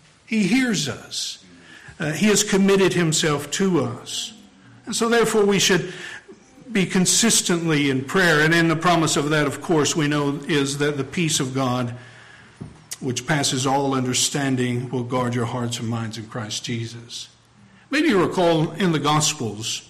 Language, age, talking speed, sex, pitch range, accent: English, 50-69, 165 wpm, male, 135-185 Hz, American